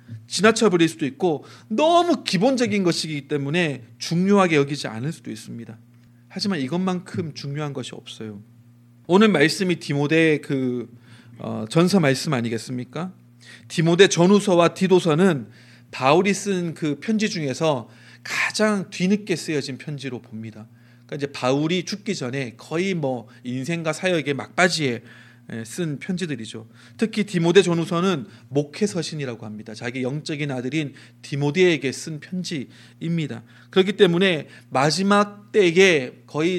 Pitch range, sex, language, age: 120-180 Hz, male, Korean, 40-59